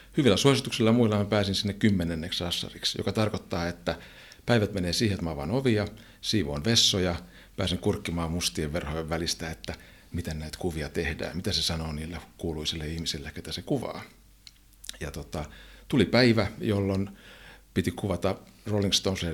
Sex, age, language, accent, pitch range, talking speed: male, 60-79, Finnish, native, 85-105 Hz, 150 wpm